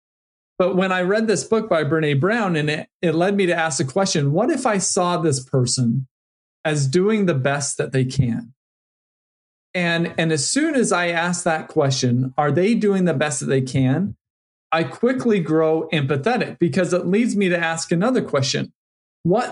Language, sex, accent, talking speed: English, male, American, 190 wpm